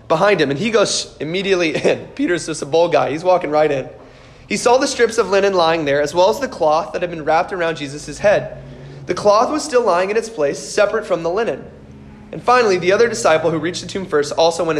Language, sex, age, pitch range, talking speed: English, male, 20-39, 145-195 Hz, 245 wpm